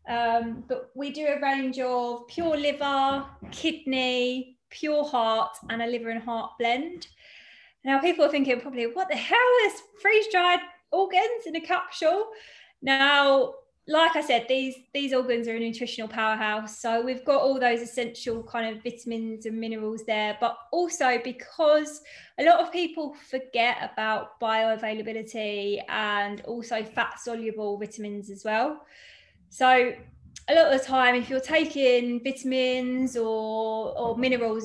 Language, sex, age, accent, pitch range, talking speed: English, female, 20-39, British, 230-275 Hz, 145 wpm